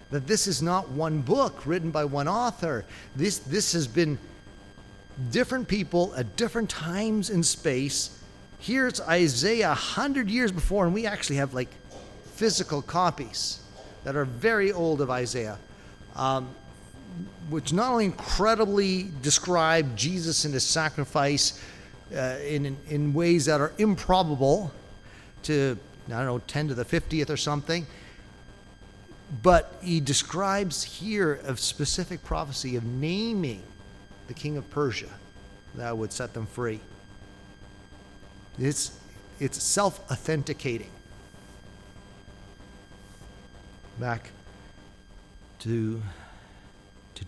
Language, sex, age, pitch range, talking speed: English, male, 40-59, 100-165 Hz, 115 wpm